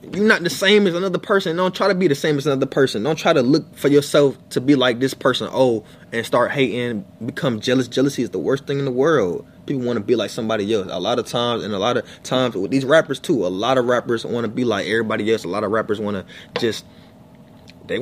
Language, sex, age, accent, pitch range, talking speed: English, male, 20-39, American, 115-165 Hz, 265 wpm